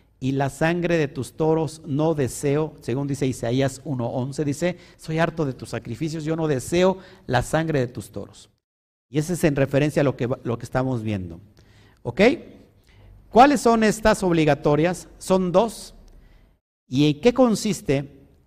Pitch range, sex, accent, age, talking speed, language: 125-175 Hz, male, Mexican, 50-69, 160 wpm, Spanish